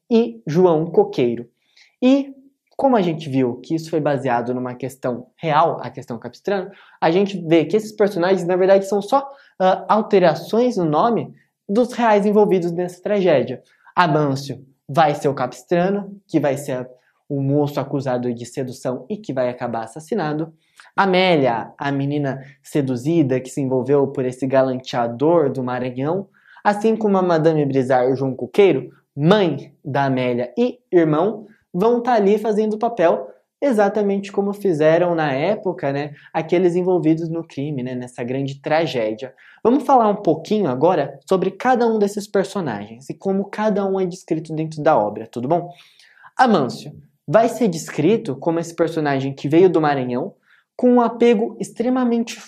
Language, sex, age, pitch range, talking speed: Portuguese, male, 20-39, 140-205 Hz, 155 wpm